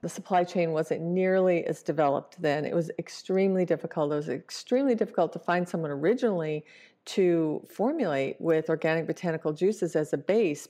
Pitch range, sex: 155-185 Hz, female